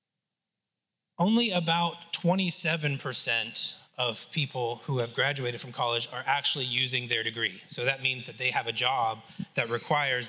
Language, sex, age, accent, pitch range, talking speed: English, male, 30-49, American, 120-150 Hz, 145 wpm